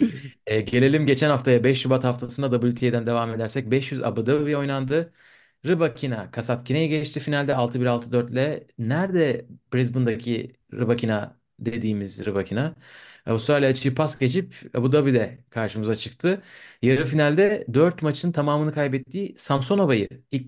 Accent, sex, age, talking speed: native, male, 30-49, 115 wpm